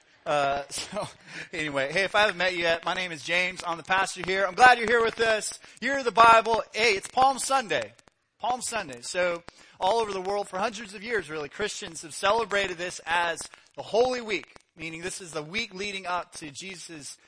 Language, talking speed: English, 210 wpm